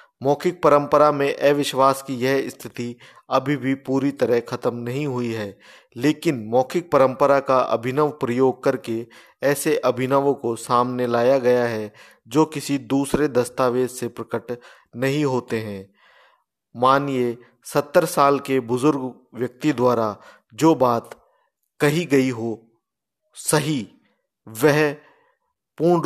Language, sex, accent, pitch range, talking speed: Hindi, male, native, 120-145 Hz, 120 wpm